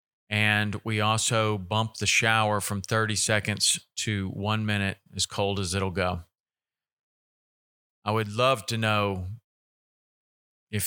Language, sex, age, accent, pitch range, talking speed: English, male, 40-59, American, 100-115 Hz, 125 wpm